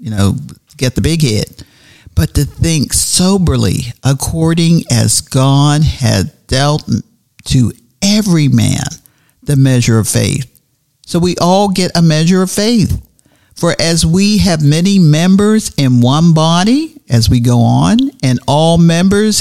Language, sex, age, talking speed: English, male, 50-69, 140 wpm